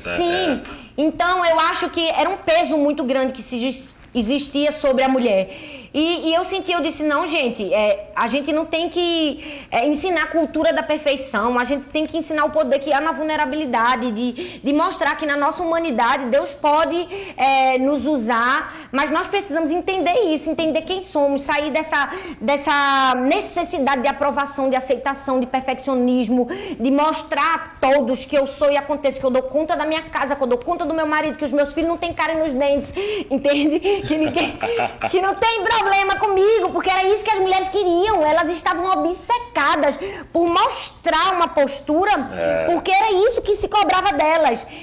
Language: Portuguese